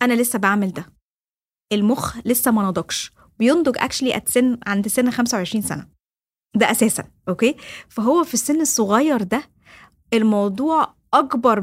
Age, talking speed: 20-39, 125 wpm